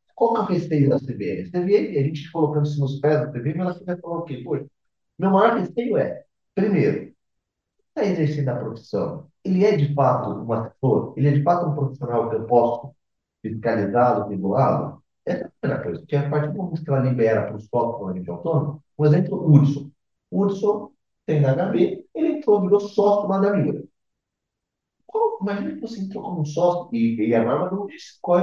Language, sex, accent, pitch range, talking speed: Portuguese, male, Brazilian, 135-180 Hz, 205 wpm